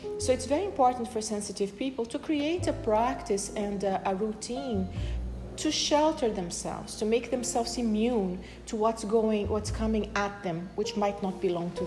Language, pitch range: English, 175-220 Hz